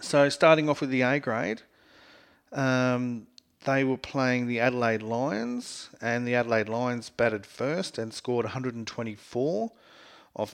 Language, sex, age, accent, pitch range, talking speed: English, male, 40-59, Australian, 115-135 Hz, 135 wpm